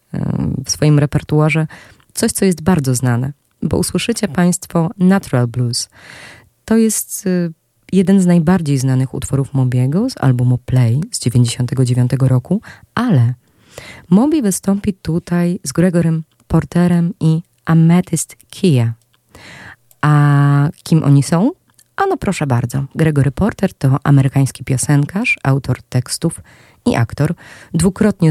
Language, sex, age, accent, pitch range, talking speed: Polish, female, 20-39, native, 130-170 Hz, 115 wpm